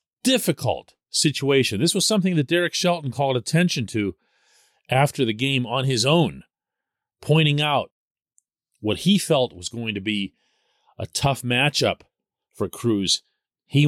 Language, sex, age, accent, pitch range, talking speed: English, male, 40-59, American, 115-155 Hz, 140 wpm